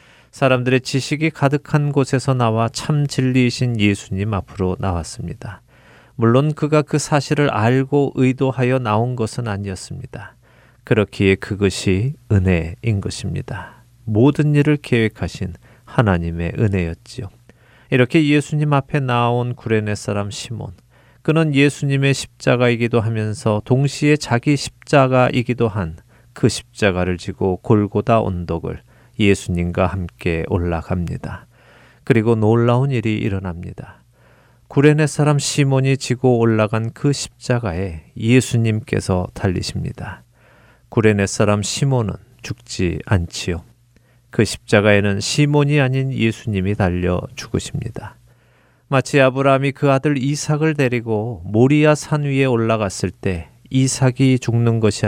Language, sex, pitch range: Korean, male, 100-135 Hz